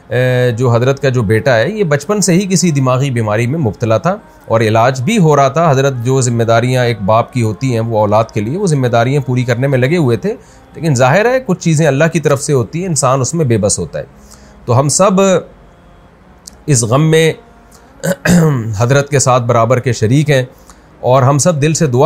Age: 40-59